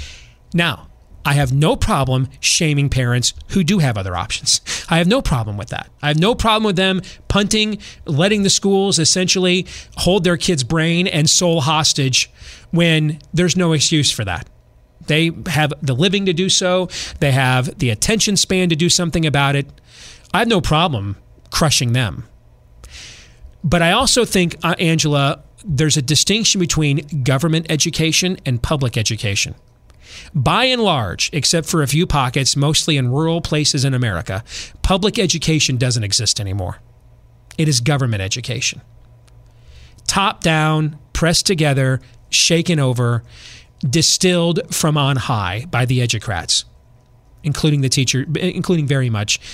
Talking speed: 145 wpm